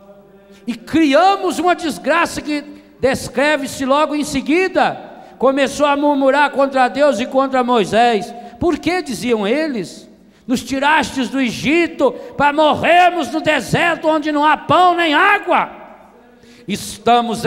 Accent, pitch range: Brazilian, 180-270 Hz